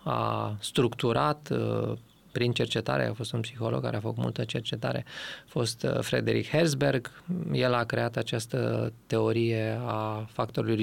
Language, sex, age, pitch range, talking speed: Romanian, male, 20-39, 110-145 Hz, 135 wpm